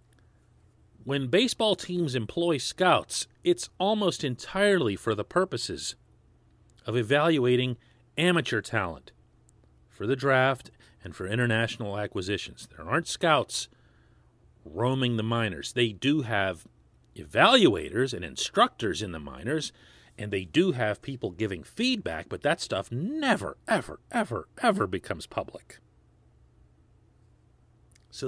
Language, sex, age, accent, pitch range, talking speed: English, male, 40-59, American, 110-170 Hz, 115 wpm